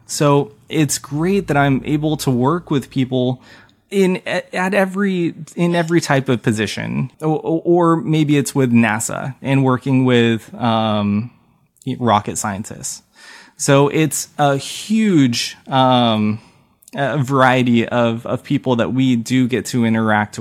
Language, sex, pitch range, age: English, male, 115-145 Hz, 20-39